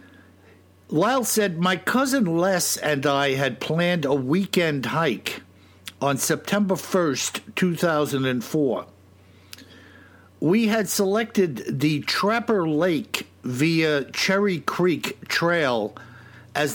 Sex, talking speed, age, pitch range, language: male, 95 wpm, 60-79, 140-190 Hz, English